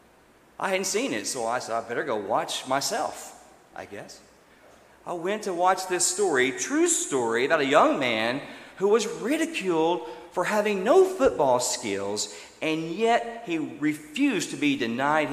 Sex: male